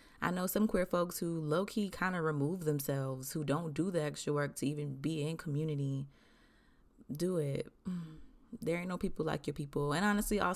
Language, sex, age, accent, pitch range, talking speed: English, female, 20-39, American, 140-170 Hz, 195 wpm